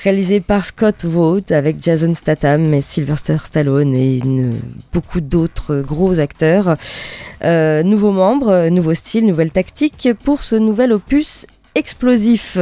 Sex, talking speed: female, 135 wpm